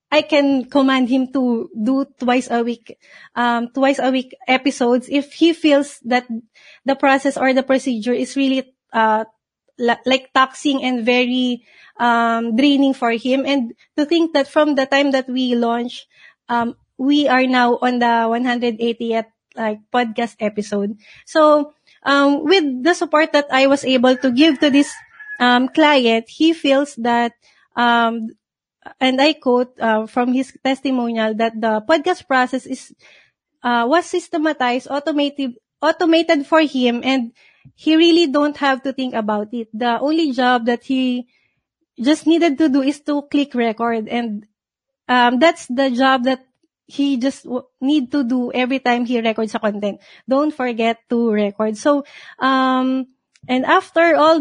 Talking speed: 155 wpm